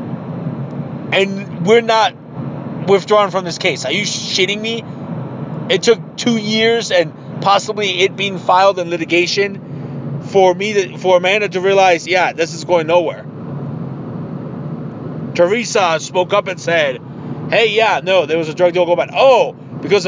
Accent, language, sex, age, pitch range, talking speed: American, English, male, 30-49, 160-205 Hz, 150 wpm